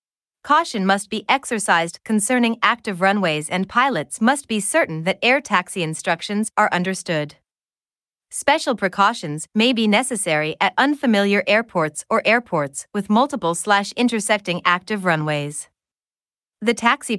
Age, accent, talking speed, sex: 30-49, American, 120 wpm, female